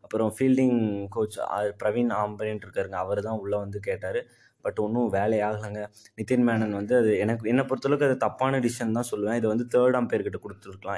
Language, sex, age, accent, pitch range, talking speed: Tamil, male, 20-39, native, 105-130 Hz, 170 wpm